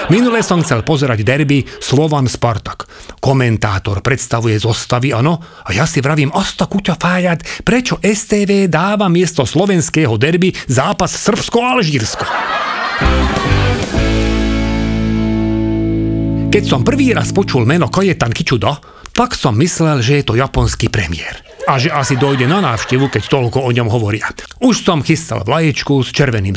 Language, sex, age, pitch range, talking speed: English, male, 40-59, 115-160 Hz, 135 wpm